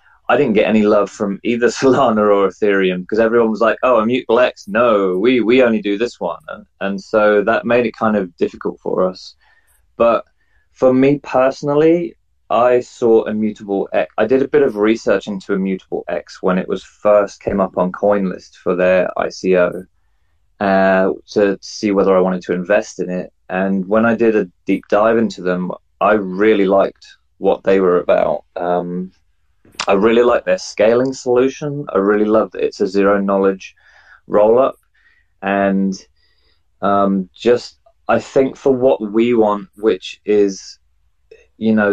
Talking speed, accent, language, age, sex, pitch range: 165 wpm, British, English, 20-39, male, 95-115 Hz